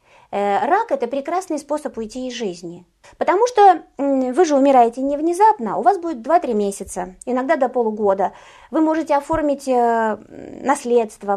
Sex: female